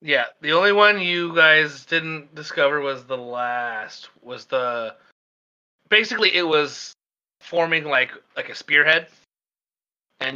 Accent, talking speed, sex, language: American, 125 wpm, male, English